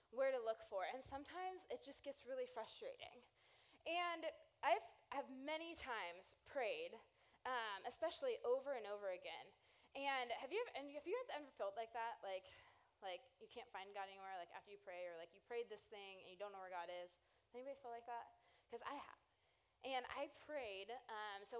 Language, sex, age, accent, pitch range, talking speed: English, female, 20-39, American, 240-320 Hz, 195 wpm